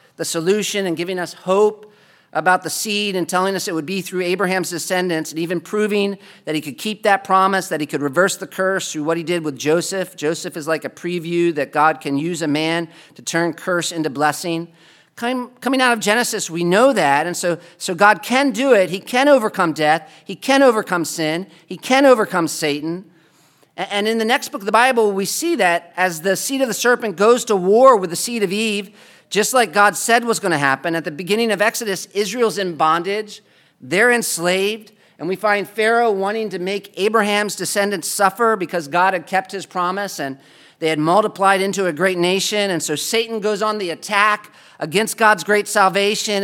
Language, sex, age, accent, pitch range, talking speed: English, male, 40-59, American, 175-215 Hz, 205 wpm